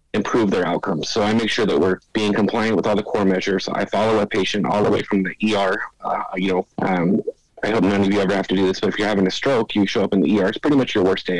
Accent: American